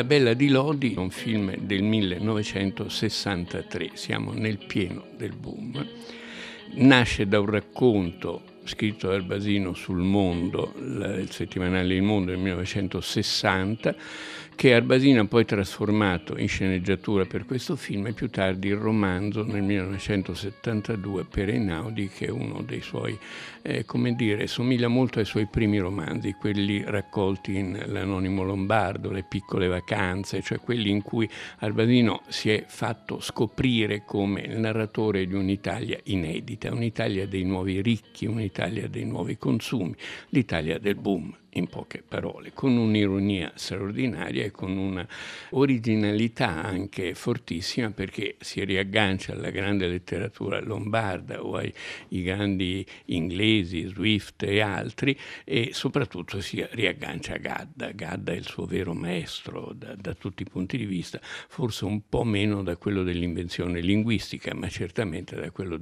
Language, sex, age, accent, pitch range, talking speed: Italian, male, 60-79, native, 95-110 Hz, 140 wpm